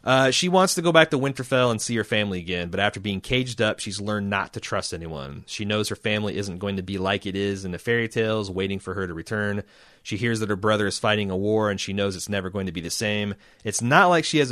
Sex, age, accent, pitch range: male, 30-49, American, 95-115 Hz